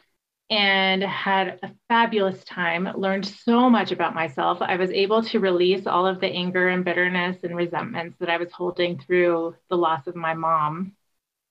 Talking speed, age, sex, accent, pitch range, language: 175 wpm, 30-49, female, American, 175-215 Hz, English